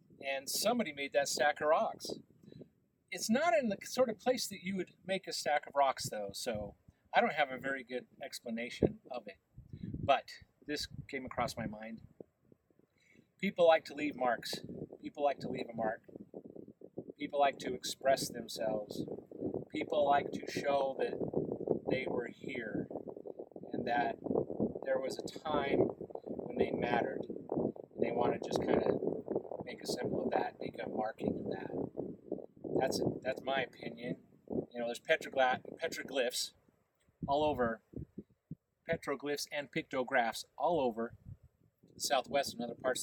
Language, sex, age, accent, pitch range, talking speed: English, male, 40-59, American, 120-165 Hz, 150 wpm